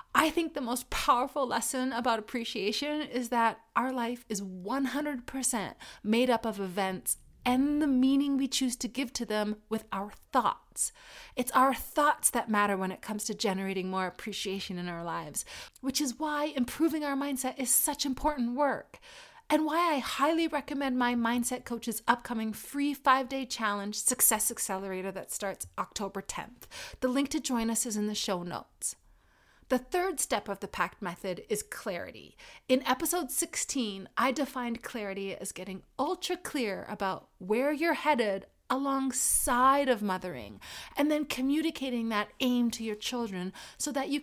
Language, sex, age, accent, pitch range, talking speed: English, female, 30-49, American, 215-285 Hz, 165 wpm